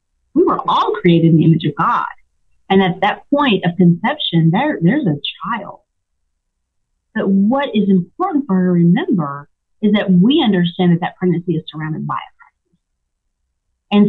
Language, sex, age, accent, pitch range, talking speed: English, female, 30-49, American, 170-225 Hz, 165 wpm